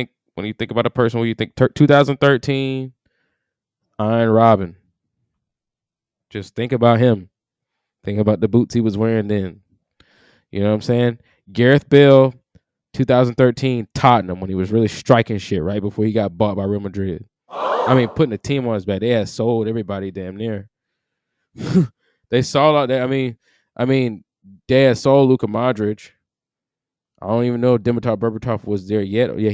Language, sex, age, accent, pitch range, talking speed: English, male, 20-39, American, 105-130 Hz, 175 wpm